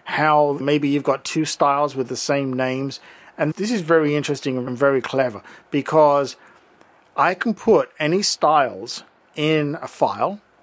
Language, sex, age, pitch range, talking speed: English, male, 50-69, 130-160 Hz, 150 wpm